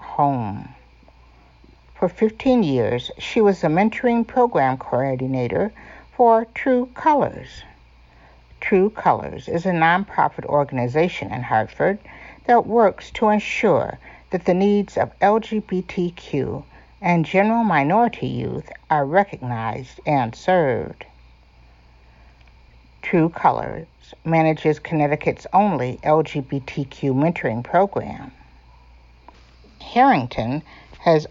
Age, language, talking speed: 60-79, English, 90 wpm